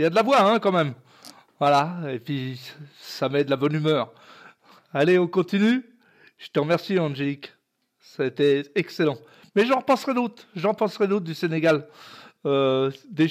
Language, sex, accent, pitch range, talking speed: French, male, French, 140-195 Hz, 180 wpm